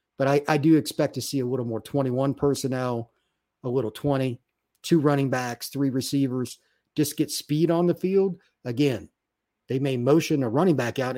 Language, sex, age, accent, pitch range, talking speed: English, male, 50-69, American, 115-150 Hz, 185 wpm